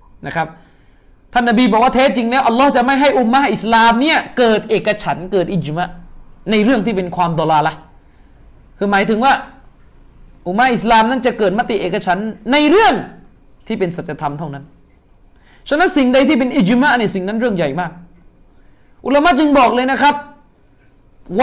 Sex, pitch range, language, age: male, 185-265 Hz, Thai, 20-39